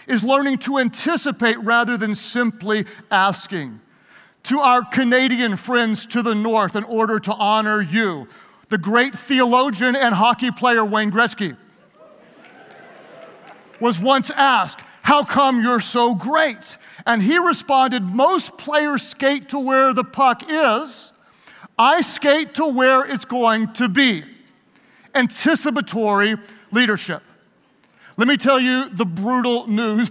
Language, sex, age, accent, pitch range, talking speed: English, male, 40-59, American, 215-265 Hz, 130 wpm